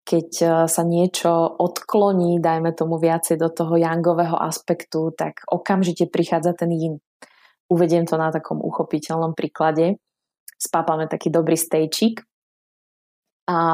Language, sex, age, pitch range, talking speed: Slovak, female, 20-39, 160-175 Hz, 120 wpm